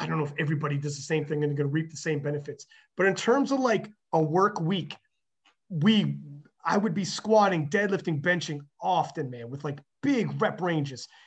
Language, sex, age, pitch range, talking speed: English, male, 30-49, 160-230 Hz, 215 wpm